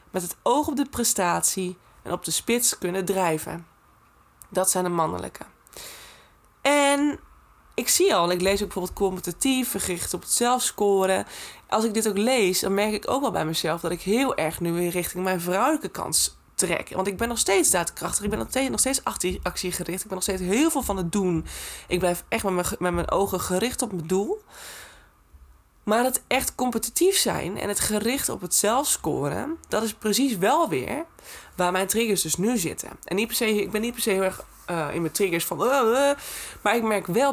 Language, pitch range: Dutch, 175-220 Hz